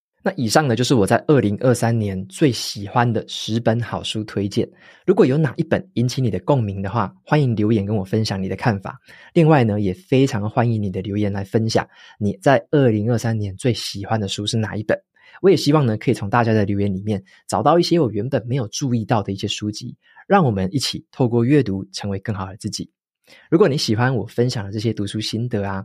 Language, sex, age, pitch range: Chinese, male, 20-39, 105-125 Hz